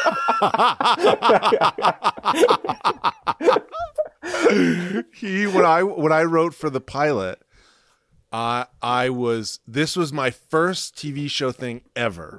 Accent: American